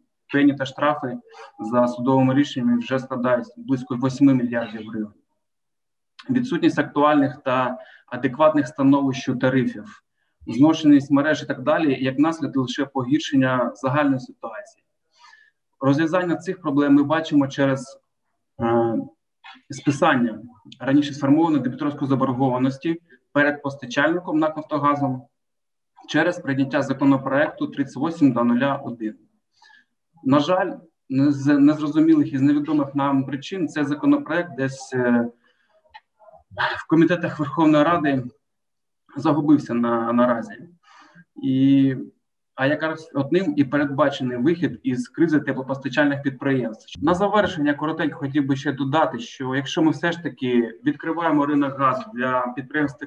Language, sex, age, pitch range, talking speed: Ukrainian, male, 20-39, 135-160 Hz, 110 wpm